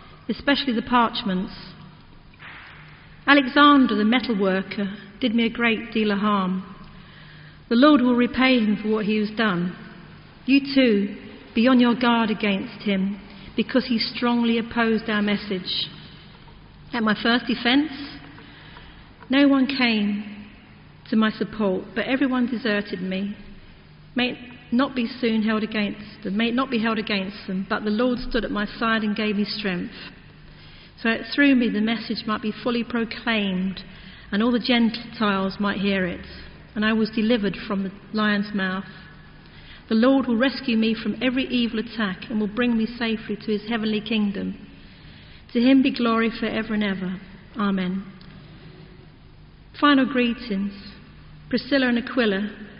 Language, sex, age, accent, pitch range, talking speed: English, female, 50-69, British, 200-240 Hz, 150 wpm